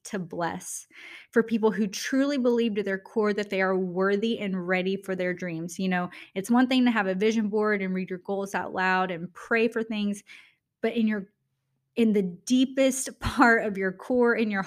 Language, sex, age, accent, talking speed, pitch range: English, female, 20-39, American, 210 wpm, 190-225 Hz